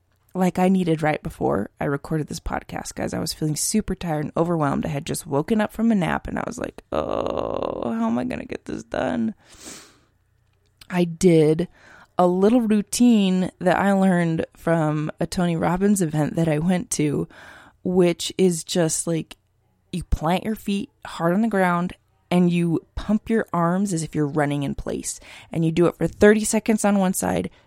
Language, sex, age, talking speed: English, female, 20-39, 190 wpm